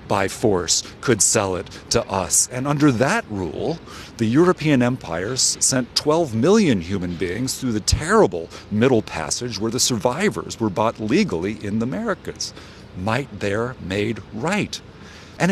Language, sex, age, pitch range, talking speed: English, male, 50-69, 105-170 Hz, 145 wpm